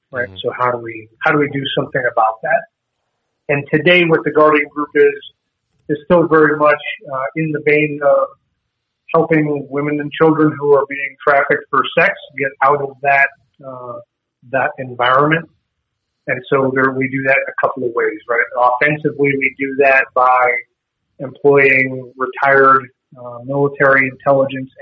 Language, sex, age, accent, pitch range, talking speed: English, male, 40-59, American, 125-145 Hz, 160 wpm